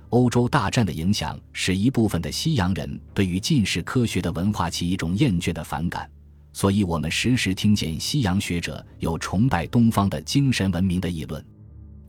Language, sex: Chinese, male